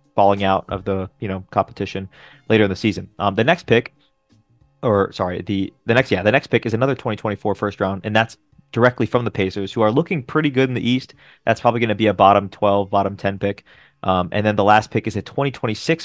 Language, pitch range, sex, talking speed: English, 100-120 Hz, male, 235 wpm